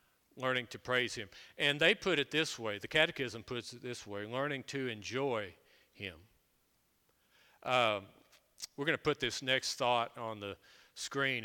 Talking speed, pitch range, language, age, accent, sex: 155 wpm, 115-135 Hz, English, 50-69, American, male